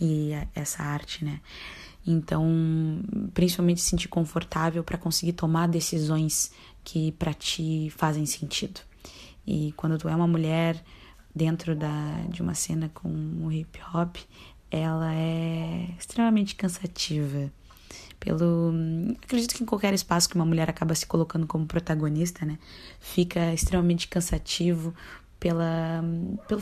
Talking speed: 125 wpm